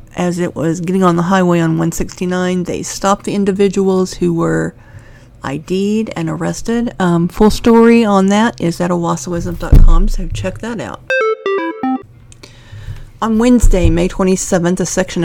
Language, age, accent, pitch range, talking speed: English, 40-59, American, 160-195 Hz, 140 wpm